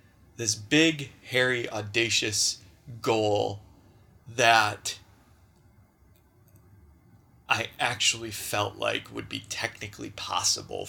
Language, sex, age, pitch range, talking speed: English, male, 20-39, 100-120 Hz, 75 wpm